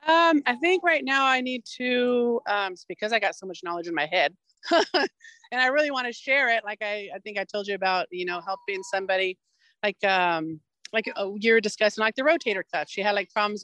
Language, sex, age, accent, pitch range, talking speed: English, female, 40-59, American, 190-250 Hz, 220 wpm